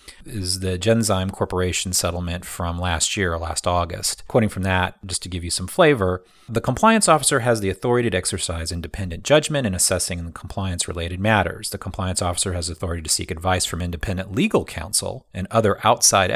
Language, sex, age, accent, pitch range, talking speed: English, male, 30-49, American, 90-115 Hz, 175 wpm